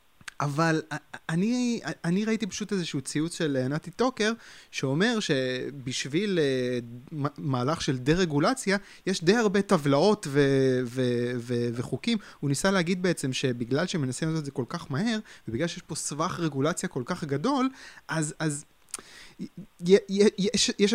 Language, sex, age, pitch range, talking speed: Hebrew, male, 20-39, 130-185 Hz, 135 wpm